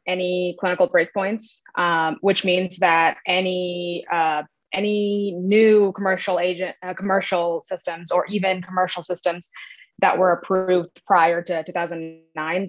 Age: 20-39